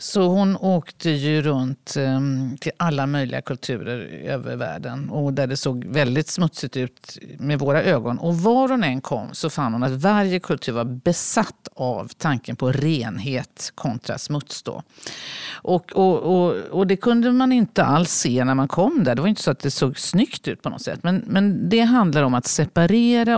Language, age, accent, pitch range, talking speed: Swedish, 50-69, native, 130-185 Hz, 190 wpm